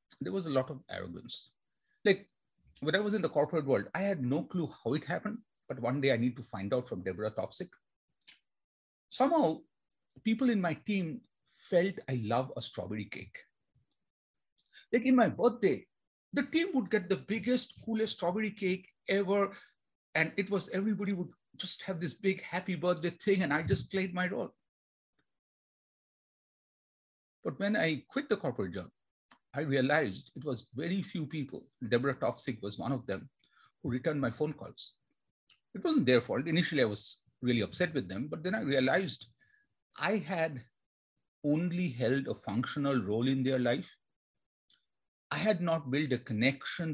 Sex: male